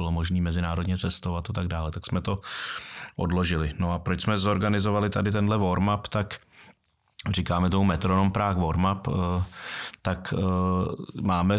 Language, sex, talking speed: Czech, male, 140 wpm